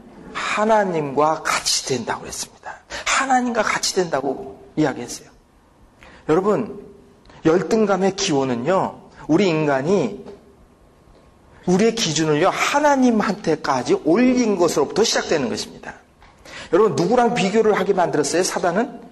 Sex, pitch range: male, 170-235 Hz